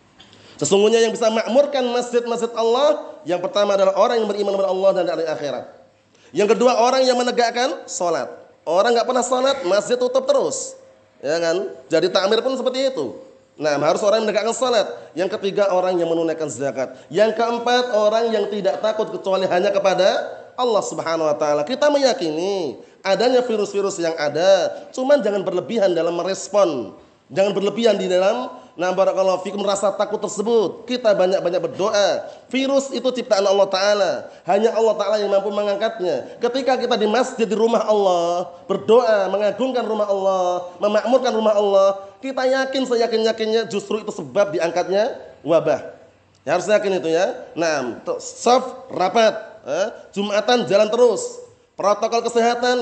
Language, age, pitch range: Indonesian, 30-49, 195-250 Hz